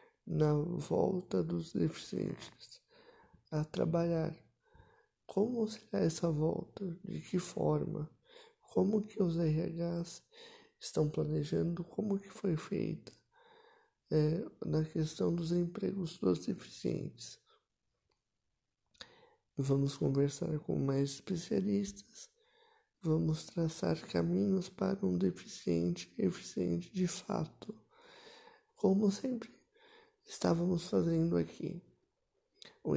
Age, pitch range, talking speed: 60-79, 155-210 Hz, 90 wpm